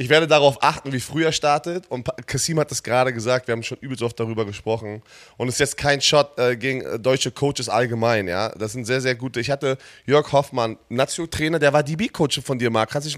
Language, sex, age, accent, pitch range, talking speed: German, male, 20-39, German, 125-155 Hz, 230 wpm